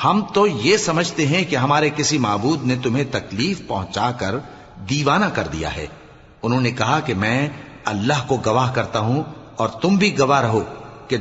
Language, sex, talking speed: Urdu, male, 180 wpm